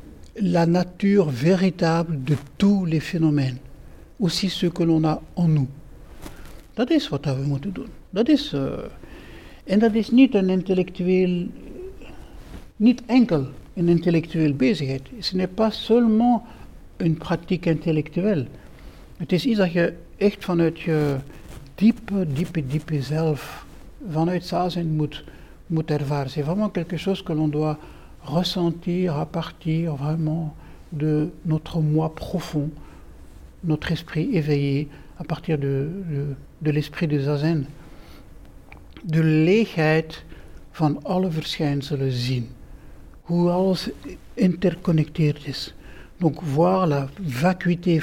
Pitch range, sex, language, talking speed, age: 150-180 Hz, male, Dutch, 120 wpm, 60-79